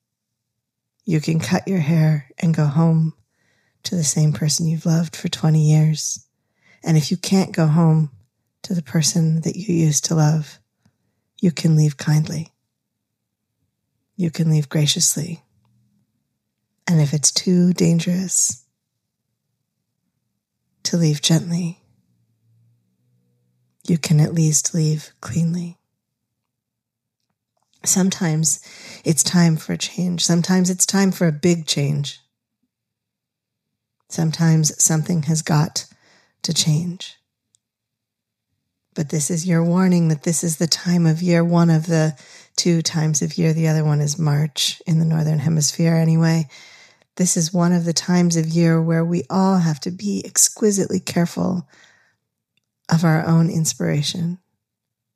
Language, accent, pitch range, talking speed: English, American, 145-175 Hz, 130 wpm